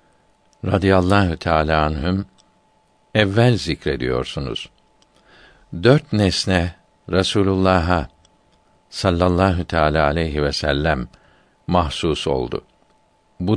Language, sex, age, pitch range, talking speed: Turkish, male, 60-79, 85-110 Hz, 70 wpm